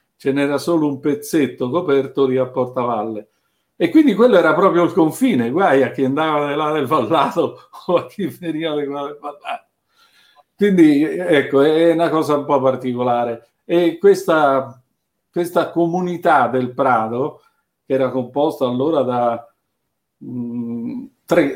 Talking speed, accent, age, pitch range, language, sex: 145 wpm, native, 50-69, 130-170 Hz, Italian, male